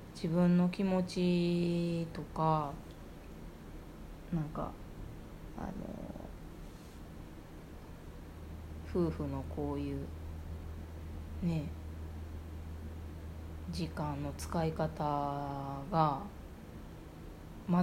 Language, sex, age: Japanese, female, 20-39